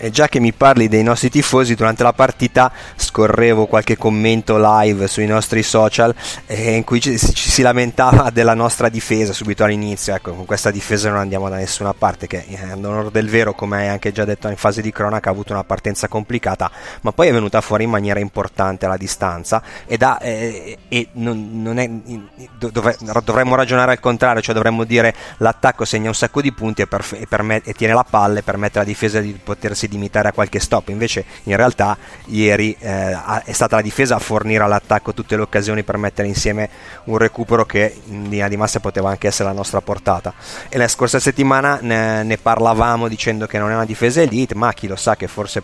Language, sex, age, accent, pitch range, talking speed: Italian, male, 20-39, native, 100-115 Hz, 210 wpm